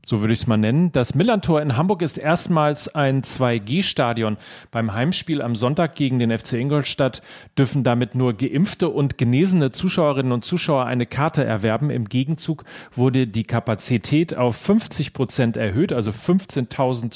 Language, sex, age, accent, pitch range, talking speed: German, male, 40-59, German, 120-160 Hz, 155 wpm